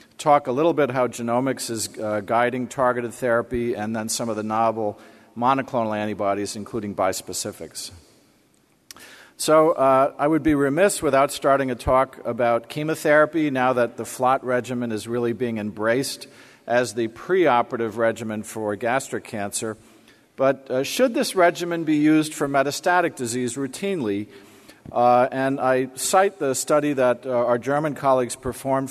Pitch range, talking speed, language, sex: 120-145 Hz, 150 wpm, English, male